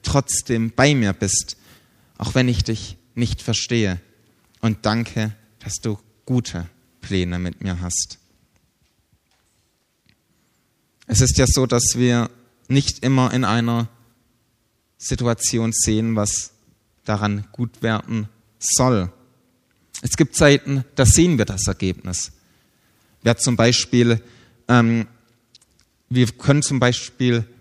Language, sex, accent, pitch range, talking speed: German, male, German, 105-125 Hz, 115 wpm